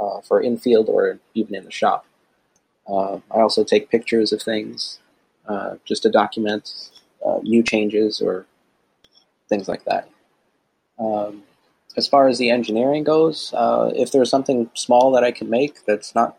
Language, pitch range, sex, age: English, 105-125 Hz, male, 20-39